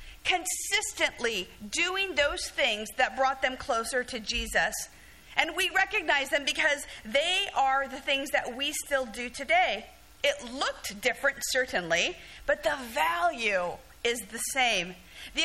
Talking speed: 135 wpm